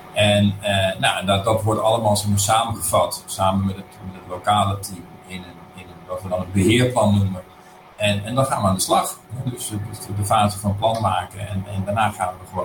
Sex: male